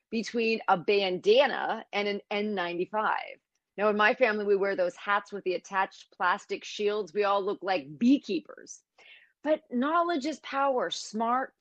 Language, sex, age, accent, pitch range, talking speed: English, female, 30-49, American, 195-260 Hz, 150 wpm